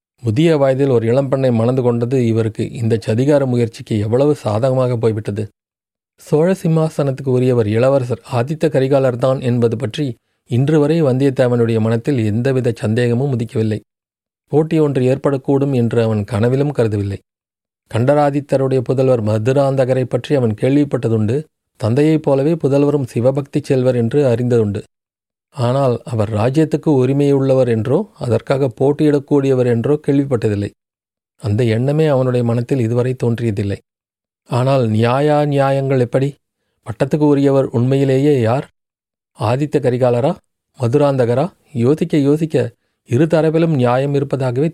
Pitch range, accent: 115-145 Hz, native